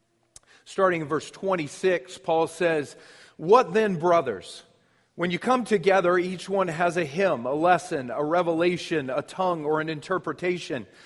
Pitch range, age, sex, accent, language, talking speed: 155-195 Hz, 40-59, male, American, English, 145 wpm